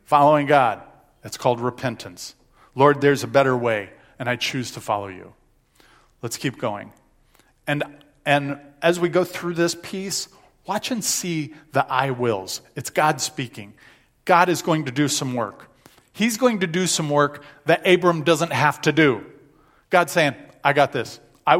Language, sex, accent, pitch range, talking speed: English, male, American, 130-175 Hz, 170 wpm